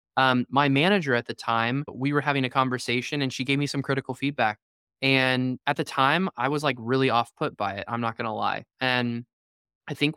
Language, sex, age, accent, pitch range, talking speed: English, male, 20-39, American, 120-140 Hz, 225 wpm